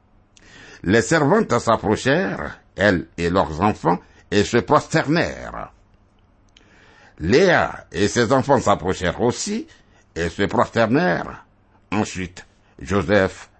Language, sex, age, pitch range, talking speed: French, male, 60-79, 95-120 Hz, 95 wpm